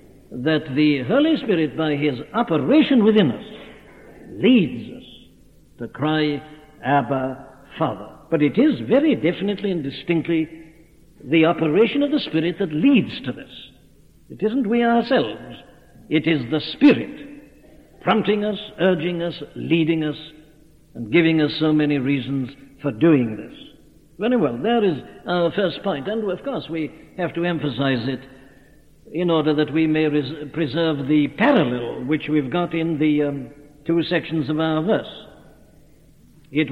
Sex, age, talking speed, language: male, 60-79, 145 wpm, English